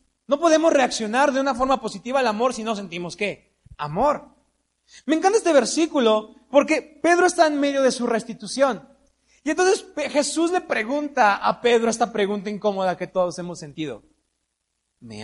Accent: Mexican